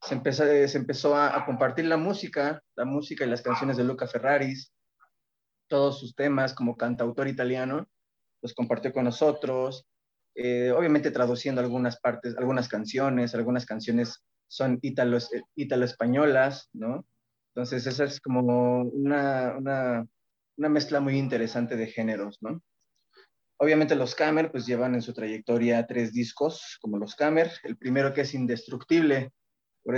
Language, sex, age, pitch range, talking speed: Spanish, male, 20-39, 120-140 Hz, 145 wpm